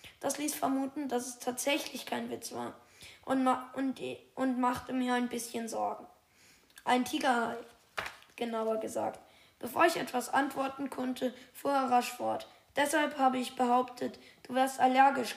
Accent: German